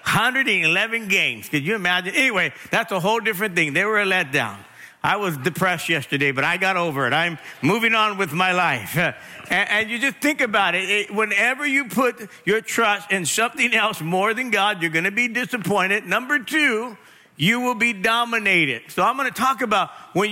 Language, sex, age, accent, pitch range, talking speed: English, male, 50-69, American, 185-240 Hz, 200 wpm